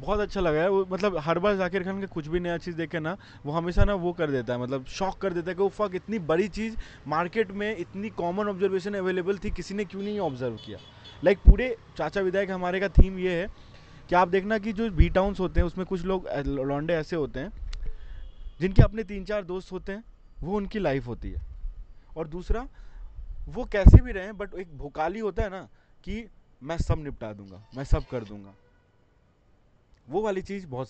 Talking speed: 215 wpm